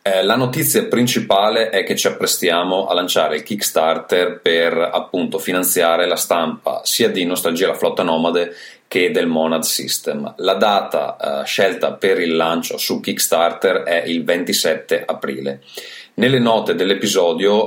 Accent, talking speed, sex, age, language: native, 145 wpm, male, 30-49, Italian